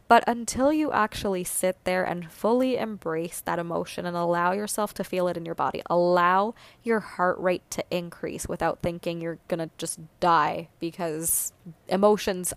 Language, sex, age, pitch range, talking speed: English, female, 20-39, 175-200 Hz, 165 wpm